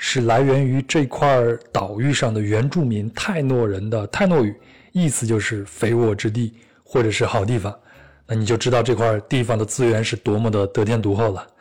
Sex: male